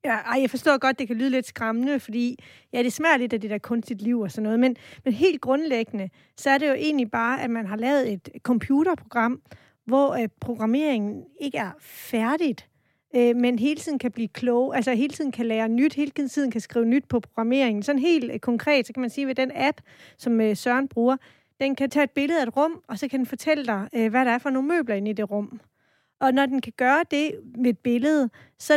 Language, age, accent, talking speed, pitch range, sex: Danish, 30-49, native, 230 wpm, 230-280 Hz, female